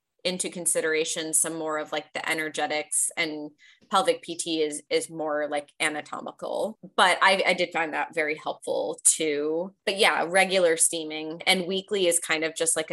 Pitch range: 155-195 Hz